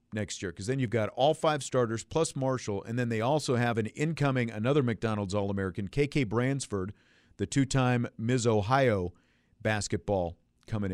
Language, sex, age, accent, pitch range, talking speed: English, male, 50-69, American, 95-125 Hz, 160 wpm